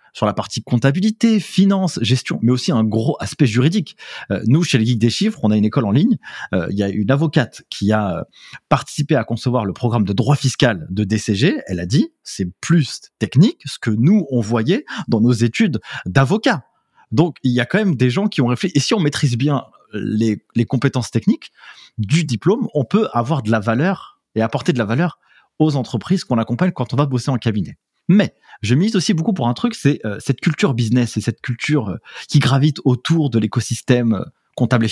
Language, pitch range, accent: French, 115-155 Hz, French